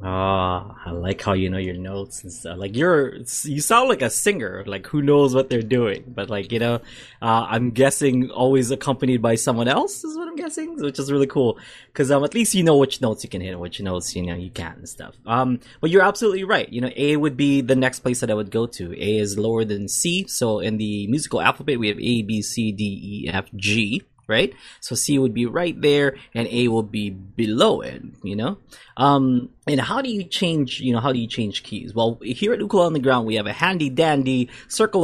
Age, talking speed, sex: 20-39, 245 wpm, male